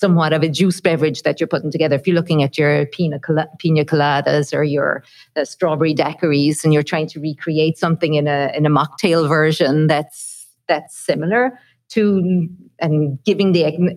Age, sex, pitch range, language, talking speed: 50-69, female, 155-195 Hz, English, 180 wpm